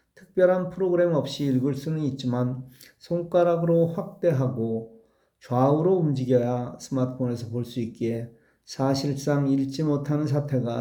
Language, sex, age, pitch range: Korean, male, 40-59, 125-160 Hz